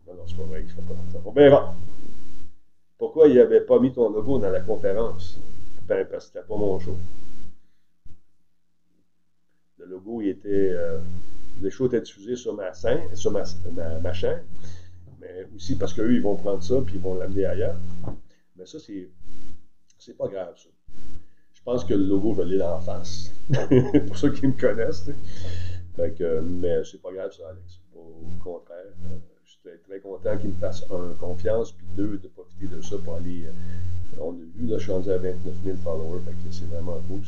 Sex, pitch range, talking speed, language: male, 90-100 Hz, 190 wpm, French